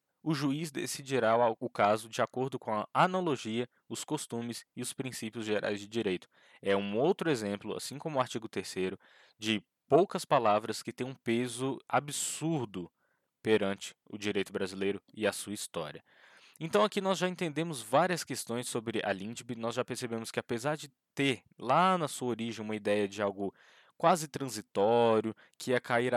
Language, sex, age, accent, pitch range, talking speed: Portuguese, male, 20-39, Brazilian, 110-140 Hz, 165 wpm